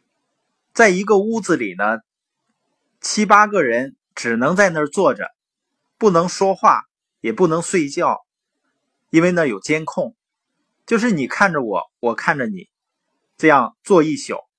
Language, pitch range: Chinese, 140-205 Hz